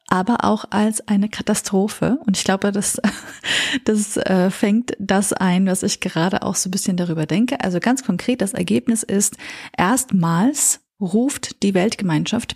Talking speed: 155 wpm